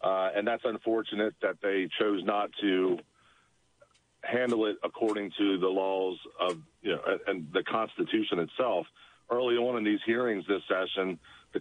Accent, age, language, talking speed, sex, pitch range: American, 50-69, English, 155 wpm, male, 95-115 Hz